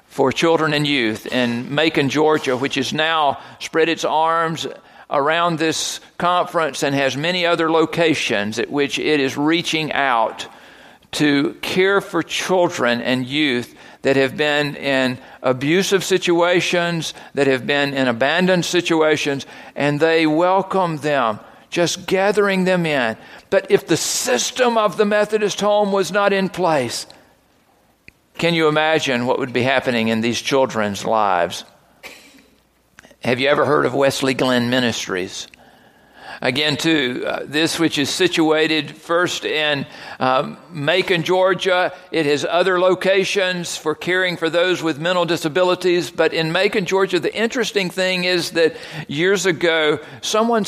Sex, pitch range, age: male, 140-185 Hz, 50-69